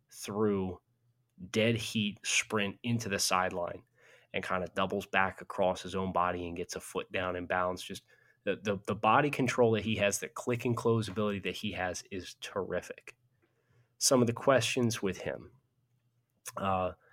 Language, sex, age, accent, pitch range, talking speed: English, male, 20-39, American, 95-120 Hz, 170 wpm